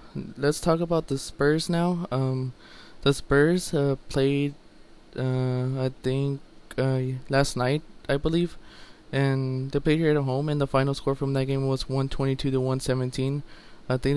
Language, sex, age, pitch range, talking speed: English, male, 20-39, 130-145 Hz, 160 wpm